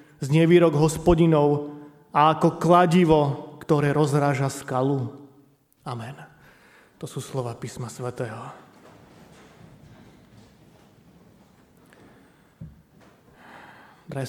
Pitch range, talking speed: 145-180 Hz, 65 wpm